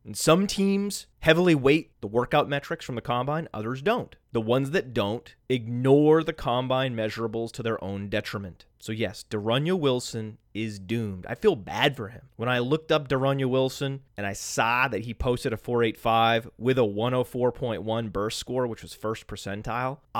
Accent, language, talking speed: American, English, 175 wpm